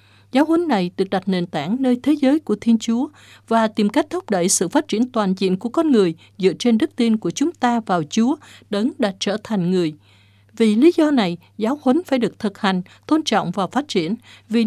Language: Vietnamese